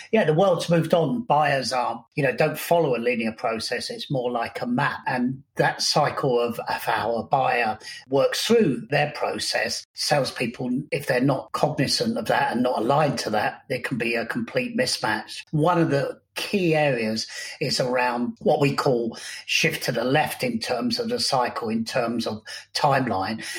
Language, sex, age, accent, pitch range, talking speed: English, male, 40-59, British, 125-165 Hz, 180 wpm